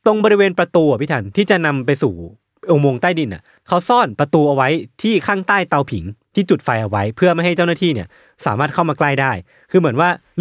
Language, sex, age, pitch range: Thai, male, 20-39, 120-175 Hz